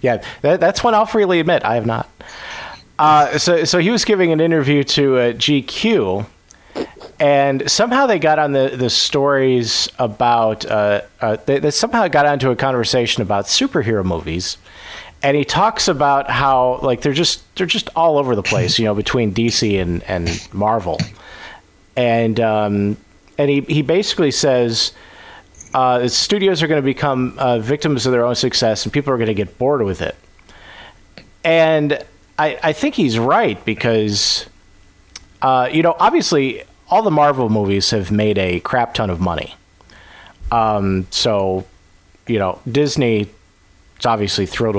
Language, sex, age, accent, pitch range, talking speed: English, male, 40-59, American, 105-145 Hz, 160 wpm